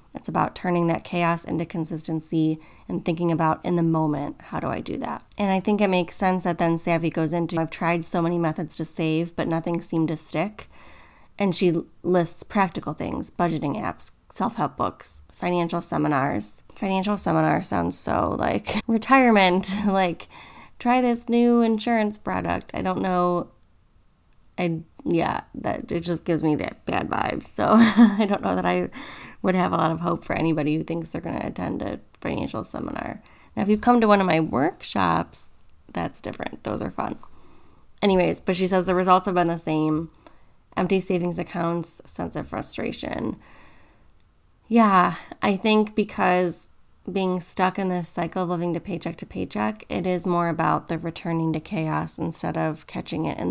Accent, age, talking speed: American, 20-39, 175 wpm